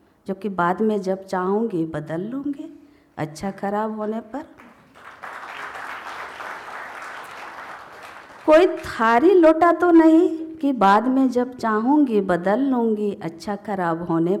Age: 50-69